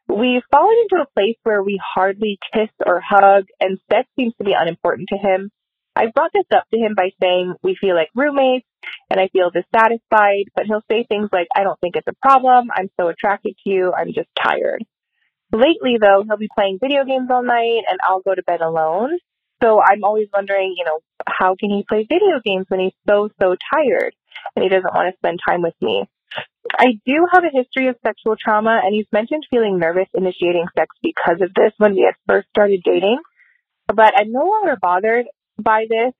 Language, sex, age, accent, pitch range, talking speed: English, female, 20-39, American, 185-235 Hz, 210 wpm